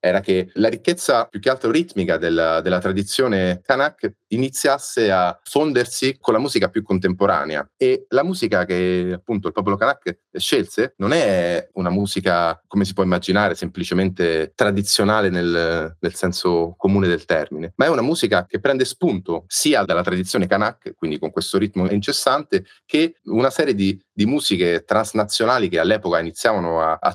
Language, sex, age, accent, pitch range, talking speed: Italian, male, 30-49, native, 90-105 Hz, 160 wpm